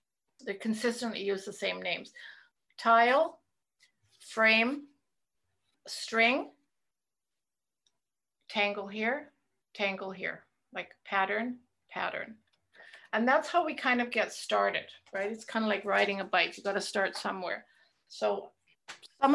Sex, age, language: female, 50-69, English